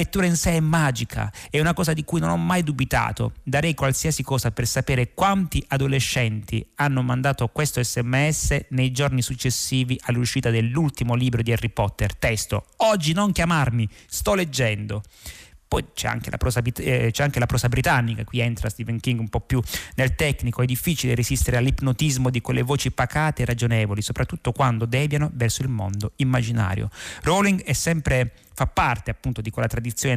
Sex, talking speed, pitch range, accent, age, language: male, 170 wpm, 115-140 Hz, native, 30-49, Italian